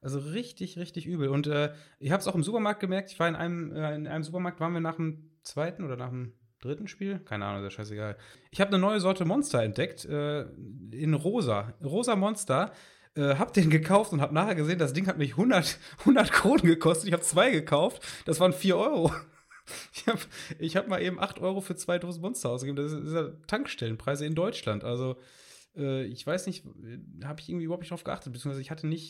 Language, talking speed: German, 225 wpm